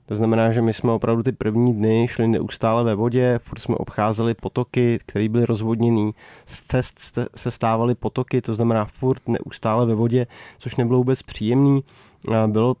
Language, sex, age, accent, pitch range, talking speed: Czech, male, 20-39, native, 115-130 Hz, 170 wpm